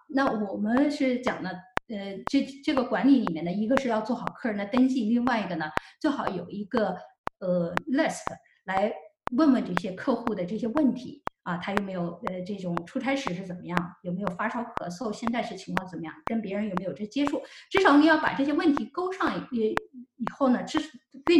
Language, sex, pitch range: Chinese, female, 195-280 Hz